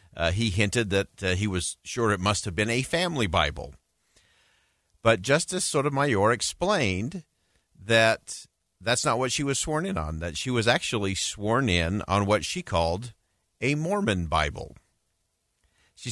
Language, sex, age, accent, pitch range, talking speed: English, male, 50-69, American, 95-125 Hz, 155 wpm